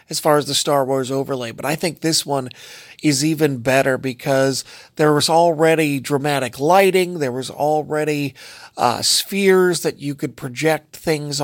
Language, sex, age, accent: English, male, 40-59, American